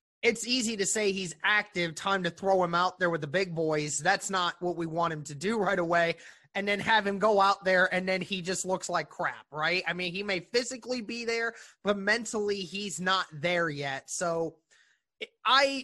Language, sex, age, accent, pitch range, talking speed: English, male, 20-39, American, 175-225 Hz, 210 wpm